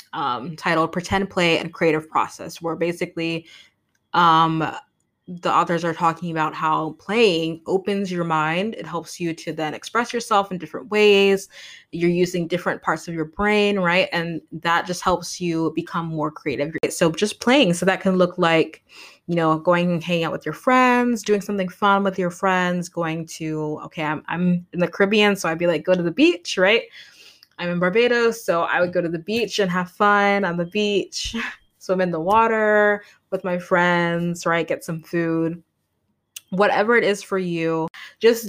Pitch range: 165-195 Hz